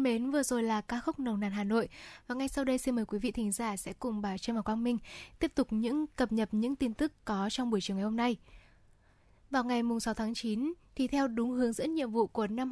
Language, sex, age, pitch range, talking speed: Vietnamese, female, 10-29, 215-265 Hz, 270 wpm